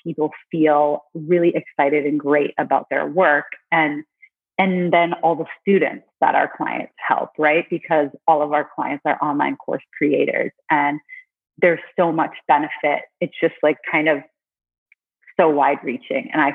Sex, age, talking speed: female, 30-49, 160 wpm